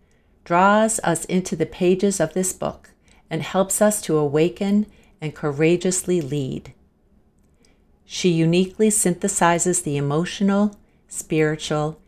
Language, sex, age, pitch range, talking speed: English, female, 50-69, 145-185 Hz, 110 wpm